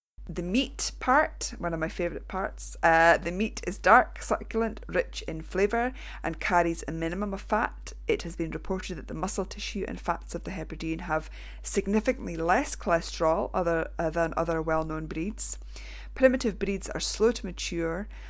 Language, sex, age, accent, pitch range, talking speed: English, female, 30-49, British, 160-200 Hz, 170 wpm